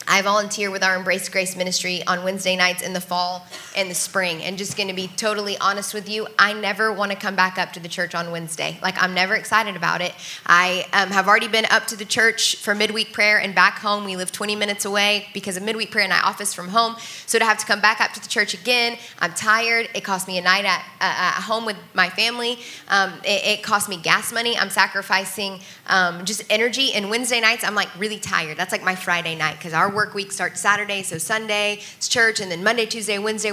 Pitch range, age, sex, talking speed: 185-215 Hz, 10-29, female, 245 wpm